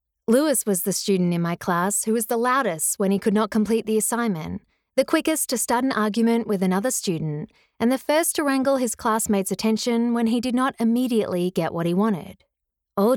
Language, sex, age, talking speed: English, female, 20-39, 205 wpm